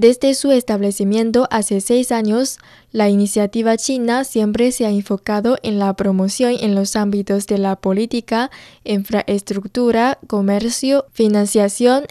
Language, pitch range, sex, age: Chinese, 200-240 Hz, female, 10-29